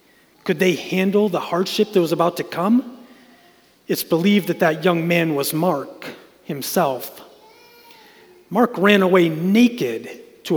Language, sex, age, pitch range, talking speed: English, male, 30-49, 150-185 Hz, 135 wpm